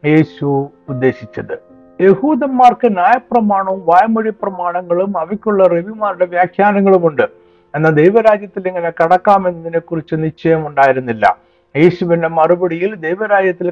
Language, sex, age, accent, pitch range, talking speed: Malayalam, male, 60-79, native, 150-195 Hz, 75 wpm